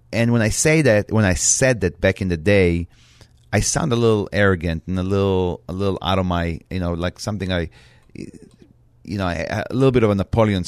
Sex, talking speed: male, 220 wpm